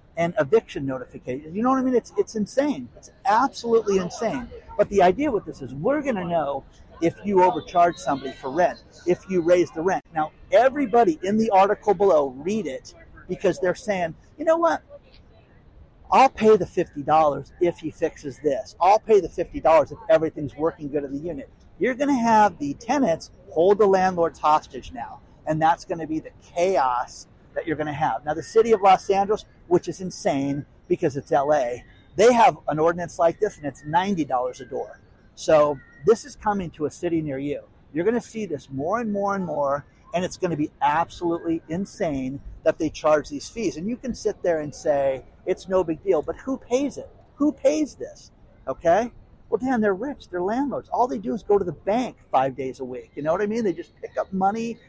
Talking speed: 210 wpm